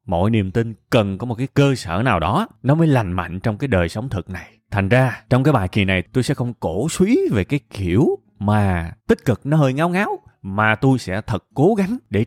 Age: 20-39